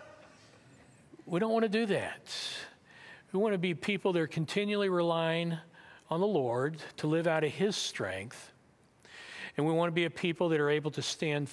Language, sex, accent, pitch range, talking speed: English, male, American, 135-175 Hz, 185 wpm